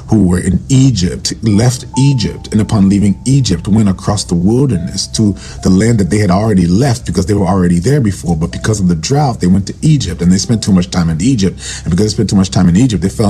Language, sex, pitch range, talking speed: English, male, 90-115 Hz, 255 wpm